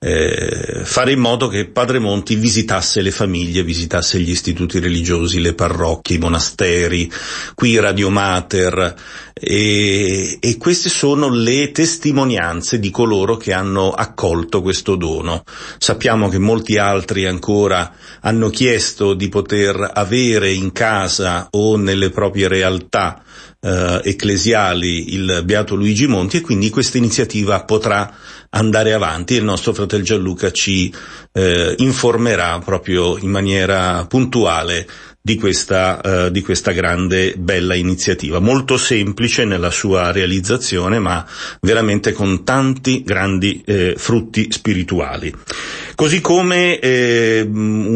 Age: 40-59